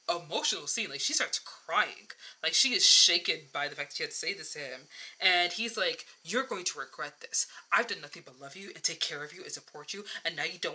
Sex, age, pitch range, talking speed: female, 20-39, 165-230 Hz, 260 wpm